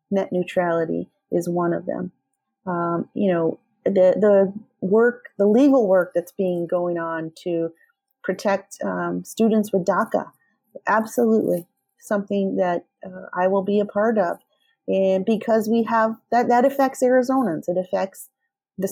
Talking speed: 145 wpm